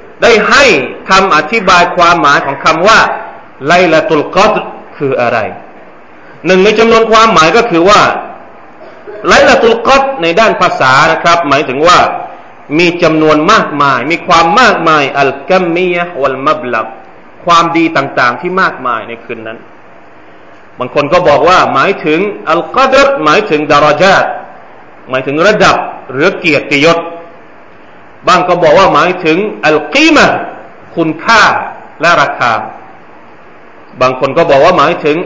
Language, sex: Thai, male